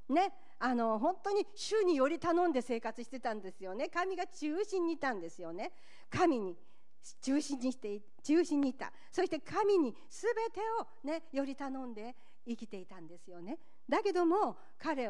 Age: 50-69